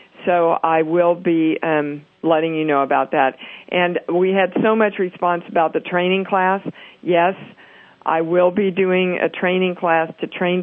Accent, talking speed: American, 170 wpm